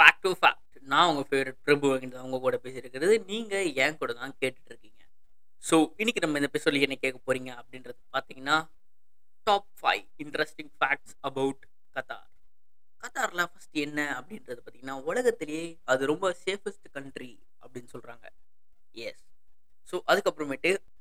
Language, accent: Tamil, native